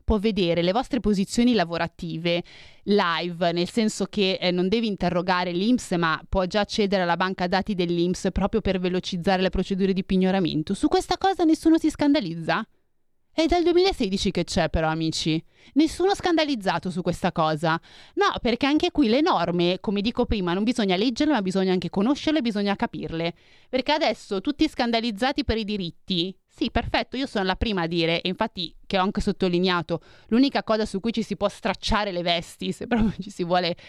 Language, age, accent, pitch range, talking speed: Italian, 30-49, native, 175-220 Hz, 180 wpm